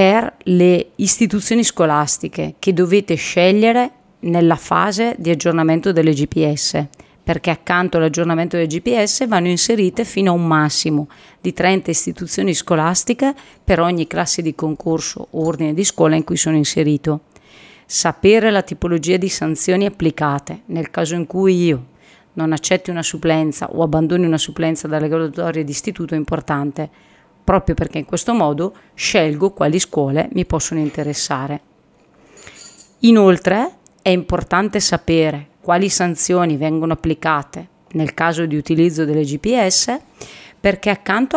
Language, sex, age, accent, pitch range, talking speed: Italian, female, 40-59, native, 160-190 Hz, 135 wpm